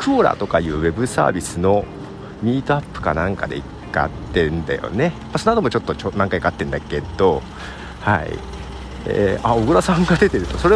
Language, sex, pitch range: Japanese, male, 85-145 Hz